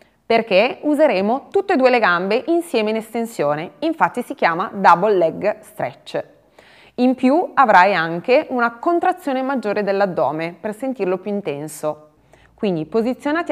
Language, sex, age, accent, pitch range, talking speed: Italian, female, 20-39, native, 170-265 Hz, 135 wpm